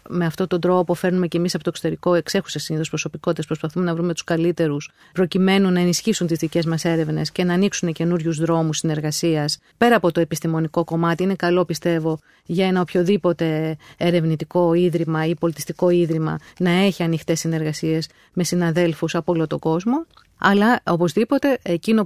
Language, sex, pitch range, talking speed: Greek, female, 165-205 Hz, 165 wpm